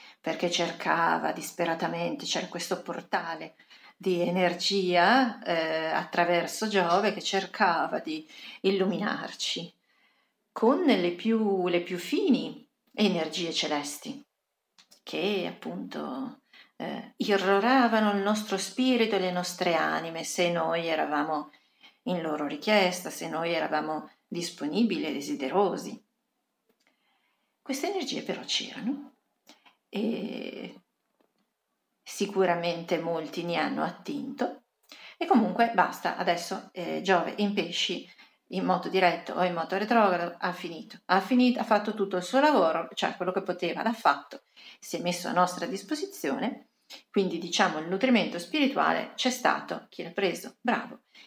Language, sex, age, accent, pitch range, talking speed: Italian, female, 40-59, native, 175-245 Hz, 120 wpm